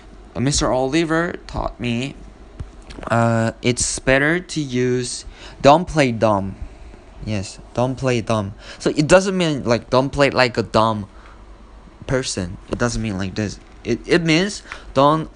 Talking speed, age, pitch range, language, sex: 140 wpm, 20-39, 110-140 Hz, English, male